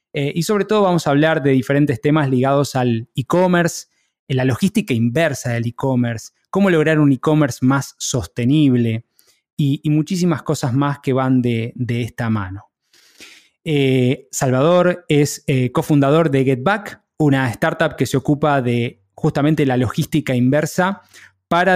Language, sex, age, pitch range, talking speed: Spanish, male, 20-39, 130-160 Hz, 145 wpm